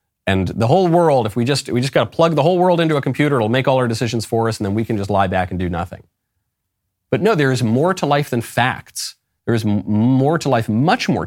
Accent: American